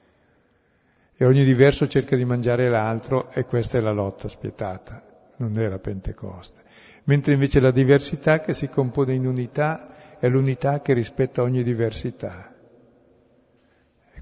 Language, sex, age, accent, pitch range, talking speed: Italian, male, 50-69, native, 110-135 Hz, 140 wpm